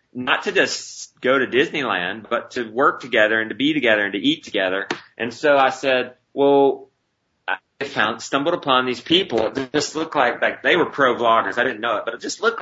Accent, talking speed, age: American, 220 wpm, 30-49